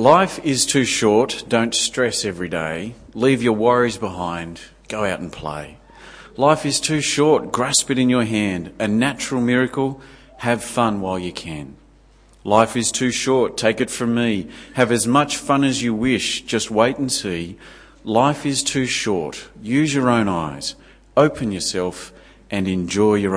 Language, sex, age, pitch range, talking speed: English, male, 40-59, 100-135 Hz, 165 wpm